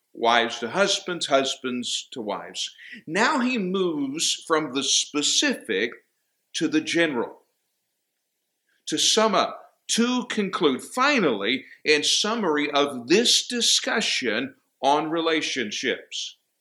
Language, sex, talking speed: English, male, 100 wpm